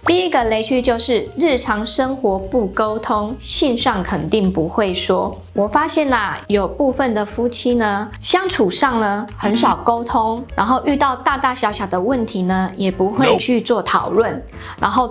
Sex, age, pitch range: female, 20-39, 205-260 Hz